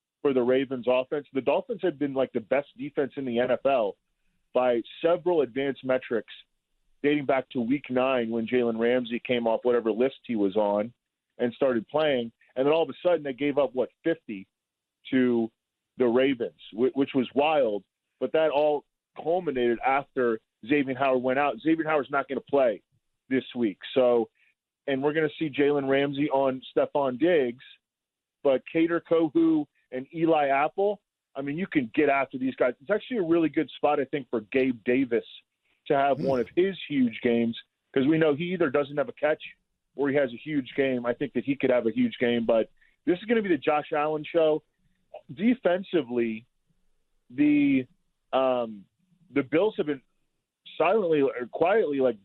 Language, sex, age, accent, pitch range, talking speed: English, male, 40-59, American, 125-155 Hz, 185 wpm